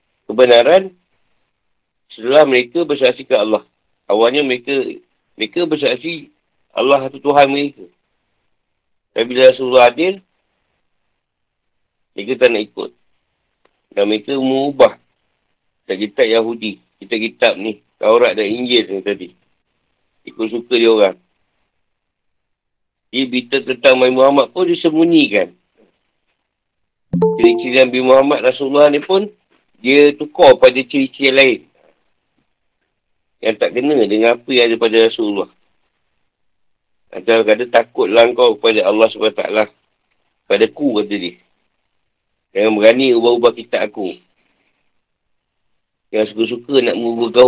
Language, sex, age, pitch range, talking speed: Malay, male, 50-69, 115-160 Hz, 105 wpm